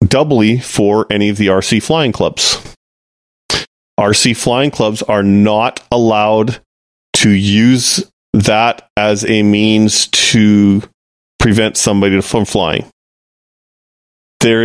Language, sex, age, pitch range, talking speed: English, male, 30-49, 90-115 Hz, 105 wpm